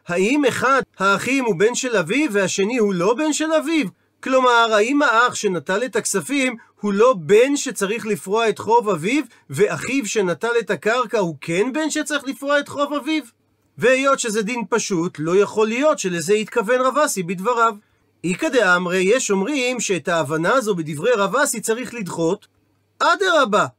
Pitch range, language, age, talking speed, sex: 190-255 Hz, Hebrew, 40-59, 160 wpm, male